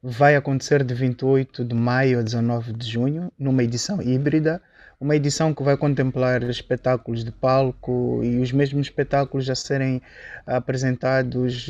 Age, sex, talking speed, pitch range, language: 20-39, male, 145 wpm, 125-135 Hz, Portuguese